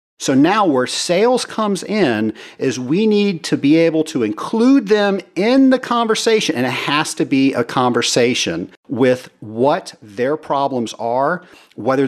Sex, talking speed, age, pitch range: male, 155 wpm, 50-69, 125-185 Hz